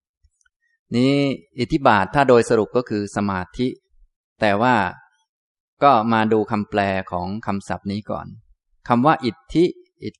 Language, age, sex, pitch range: Thai, 20-39, male, 100-120 Hz